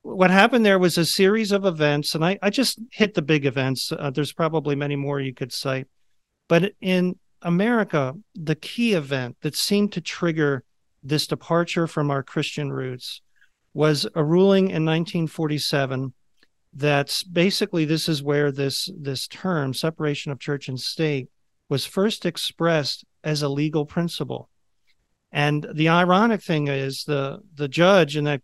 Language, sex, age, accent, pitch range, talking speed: English, male, 40-59, American, 140-180 Hz, 160 wpm